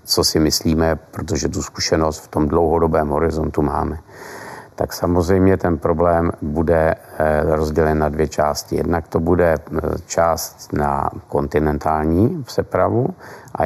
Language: Czech